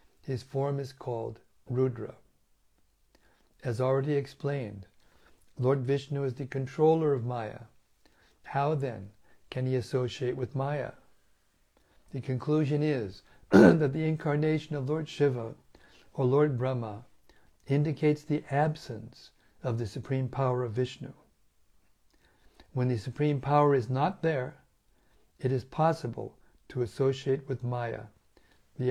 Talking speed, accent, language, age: 120 wpm, American, English, 60-79